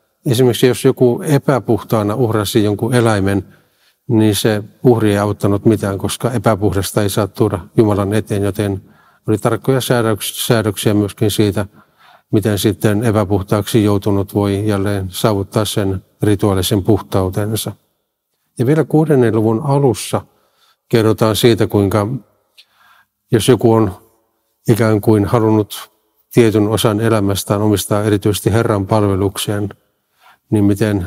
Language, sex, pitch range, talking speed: Finnish, male, 100-115 Hz, 115 wpm